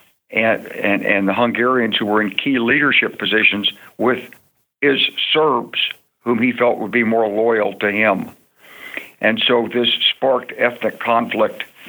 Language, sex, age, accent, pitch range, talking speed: English, male, 60-79, American, 105-125 Hz, 145 wpm